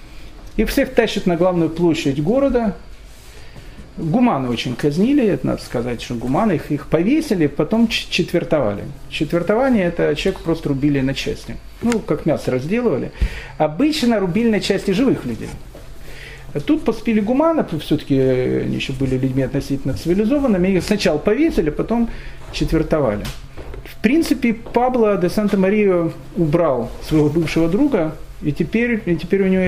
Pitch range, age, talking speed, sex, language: 140-210 Hz, 40-59, 135 wpm, male, Russian